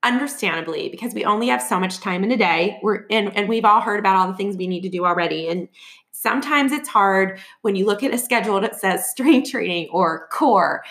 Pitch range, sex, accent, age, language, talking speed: 185-220 Hz, female, American, 20-39, English, 225 wpm